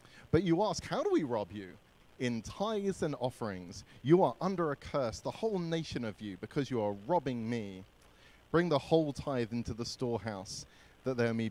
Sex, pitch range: male, 95-125 Hz